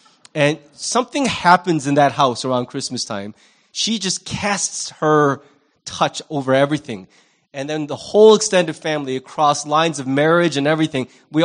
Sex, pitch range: male, 155-215 Hz